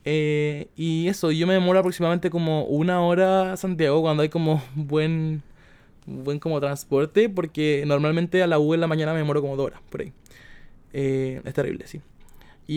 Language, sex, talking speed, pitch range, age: Spanish, male, 185 wpm, 145-170 Hz, 20-39